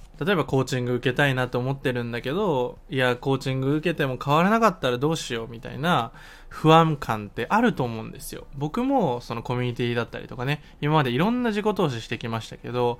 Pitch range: 125-195 Hz